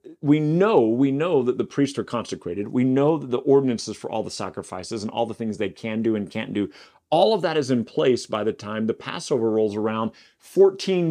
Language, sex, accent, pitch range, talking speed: English, male, American, 105-140 Hz, 225 wpm